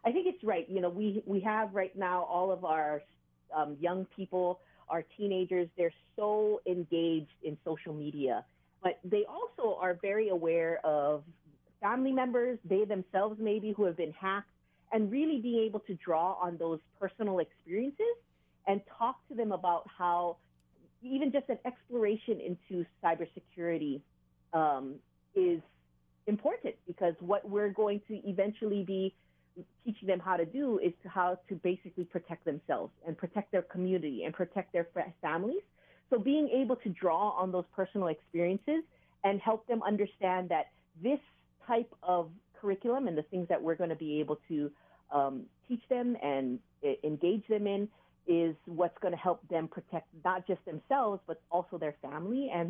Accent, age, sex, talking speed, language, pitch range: American, 40-59, female, 165 wpm, English, 165-215 Hz